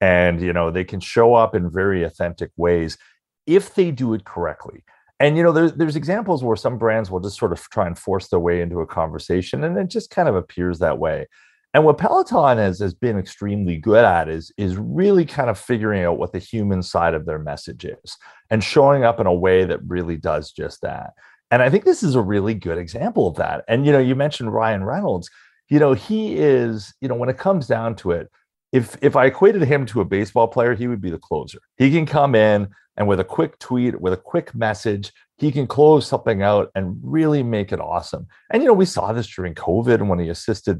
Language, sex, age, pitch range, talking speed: English, male, 30-49, 95-140 Hz, 230 wpm